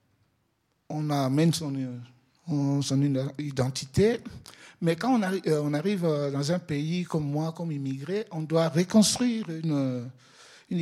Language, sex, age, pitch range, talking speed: French, male, 60-79, 145-185 Hz, 130 wpm